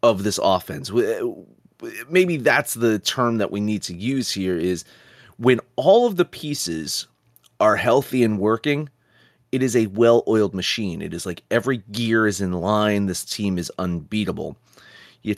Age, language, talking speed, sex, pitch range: 30-49, English, 160 wpm, male, 105-145 Hz